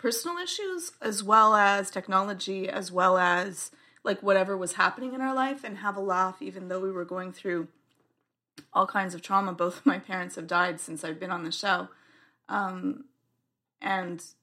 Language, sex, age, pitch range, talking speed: English, female, 30-49, 180-220 Hz, 185 wpm